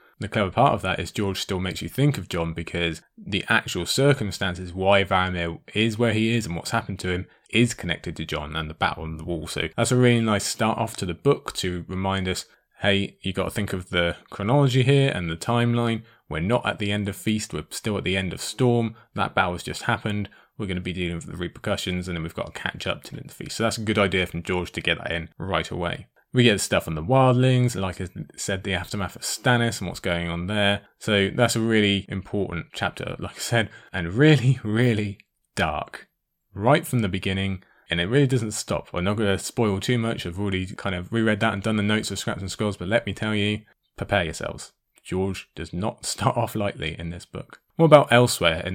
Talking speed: 240 wpm